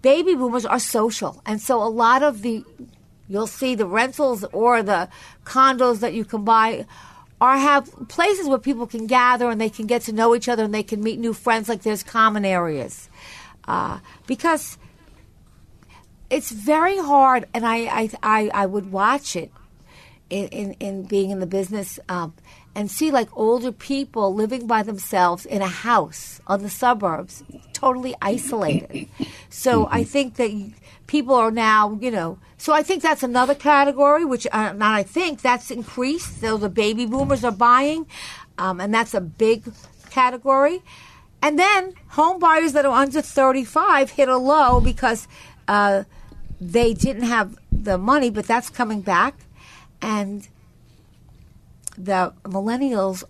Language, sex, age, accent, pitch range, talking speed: English, female, 50-69, American, 205-265 Hz, 160 wpm